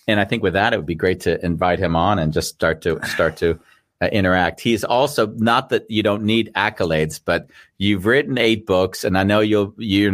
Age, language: 40-59, English